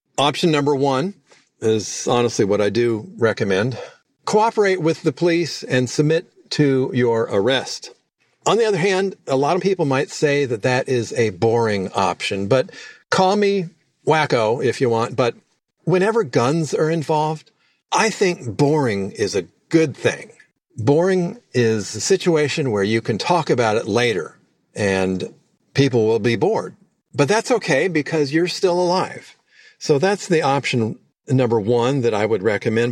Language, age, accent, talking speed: English, 50-69, American, 155 wpm